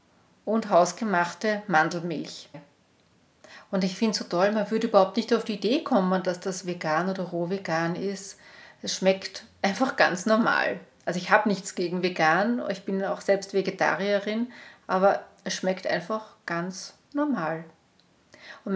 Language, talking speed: German, 150 wpm